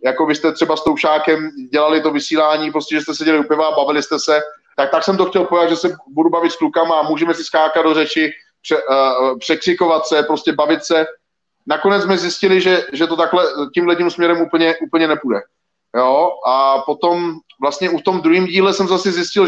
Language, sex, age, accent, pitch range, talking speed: Czech, male, 30-49, native, 150-180 Hz, 205 wpm